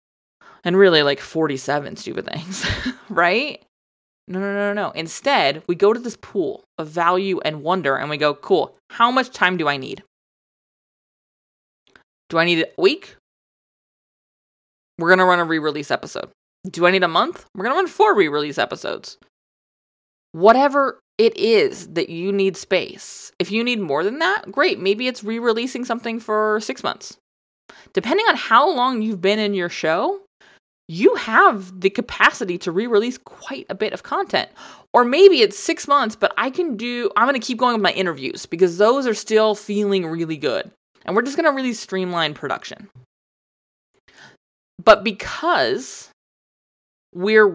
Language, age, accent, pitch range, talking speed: English, 20-39, American, 175-240 Hz, 165 wpm